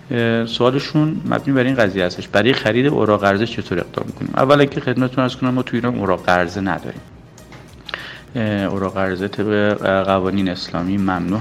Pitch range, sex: 100-125 Hz, male